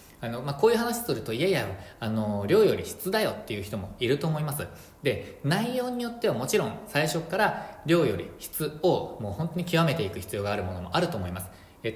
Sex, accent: male, native